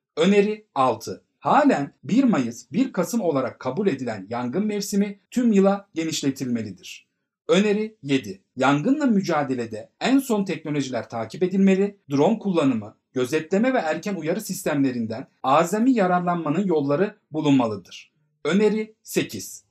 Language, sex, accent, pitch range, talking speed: Turkish, male, native, 140-210 Hz, 115 wpm